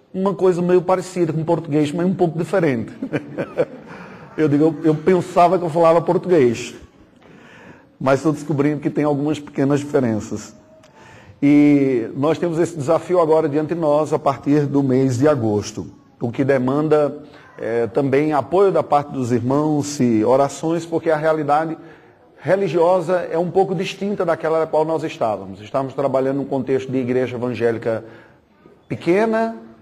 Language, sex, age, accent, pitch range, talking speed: Portuguese, male, 40-59, Brazilian, 130-165 Hz, 150 wpm